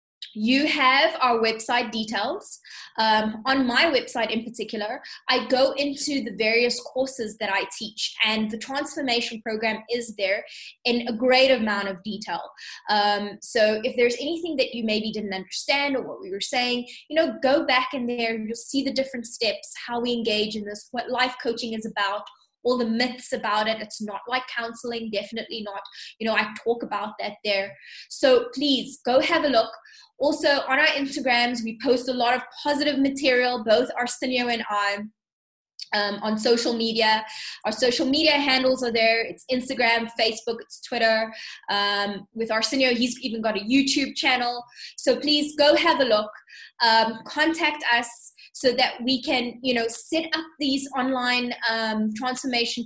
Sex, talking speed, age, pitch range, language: female, 175 wpm, 20-39, 220-265 Hz, English